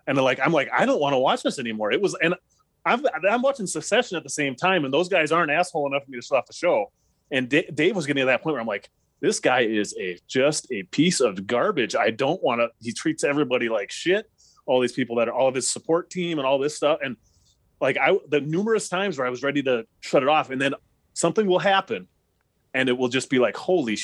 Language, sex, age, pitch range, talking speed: English, male, 30-49, 120-150 Hz, 260 wpm